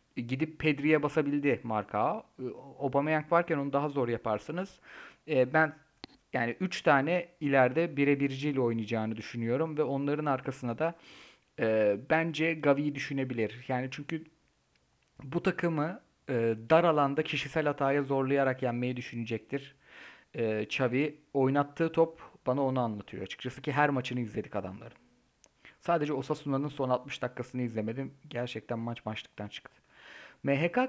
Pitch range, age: 120-155 Hz, 40-59